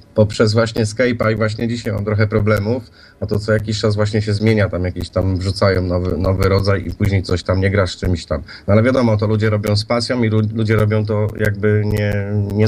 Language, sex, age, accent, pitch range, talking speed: Polish, male, 30-49, native, 100-115 Hz, 220 wpm